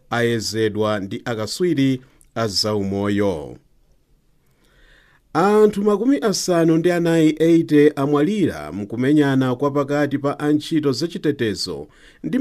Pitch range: 115-160 Hz